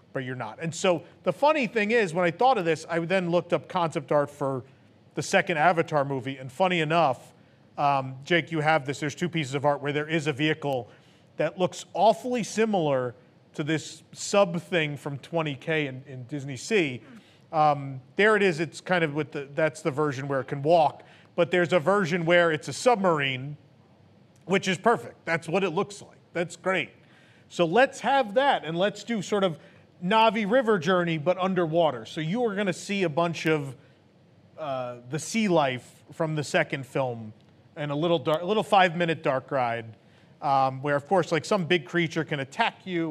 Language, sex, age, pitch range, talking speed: English, male, 40-59, 140-180 Hz, 200 wpm